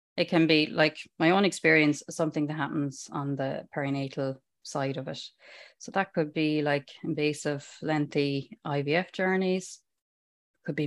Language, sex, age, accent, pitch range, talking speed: English, female, 30-49, Irish, 150-185 Hz, 150 wpm